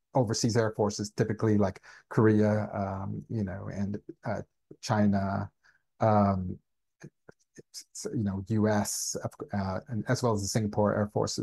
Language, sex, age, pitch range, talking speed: English, male, 30-49, 105-115 Hz, 130 wpm